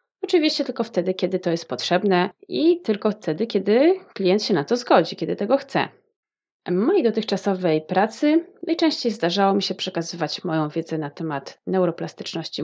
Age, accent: 30-49, native